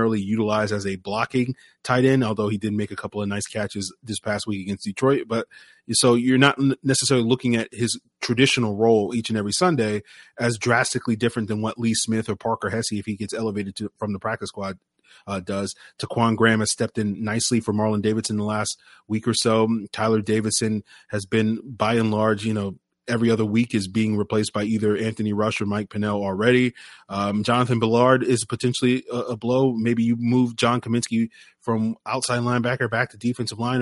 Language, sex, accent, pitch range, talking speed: English, male, American, 105-120 Hz, 200 wpm